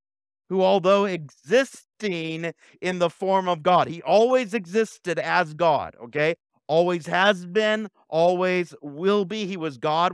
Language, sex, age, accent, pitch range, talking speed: English, male, 50-69, American, 130-190 Hz, 135 wpm